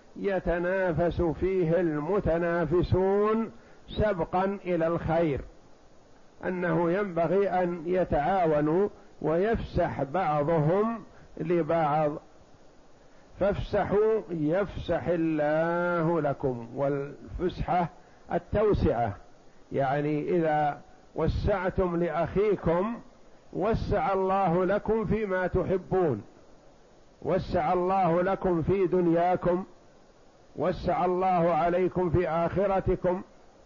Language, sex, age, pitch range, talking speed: Arabic, male, 50-69, 165-190 Hz, 70 wpm